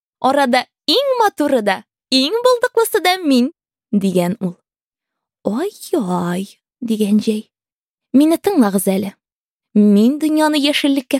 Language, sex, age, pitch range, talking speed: English, female, 20-39, 215-310 Hz, 100 wpm